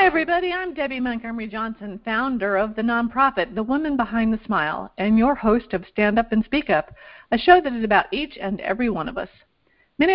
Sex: female